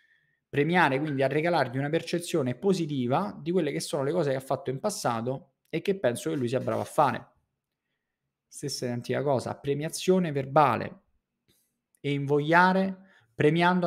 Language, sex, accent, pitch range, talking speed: Italian, male, native, 120-160 Hz, 150 wpm